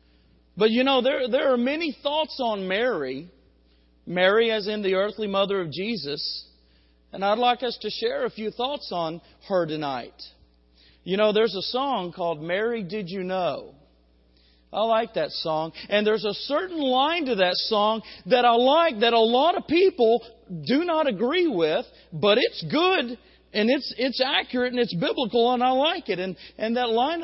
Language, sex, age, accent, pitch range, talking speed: English, male, 40-59, American, 185-270 Hz, 180 wpm